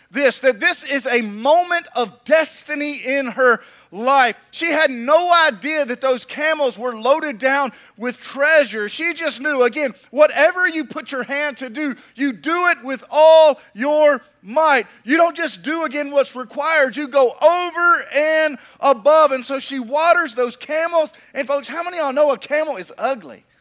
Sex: male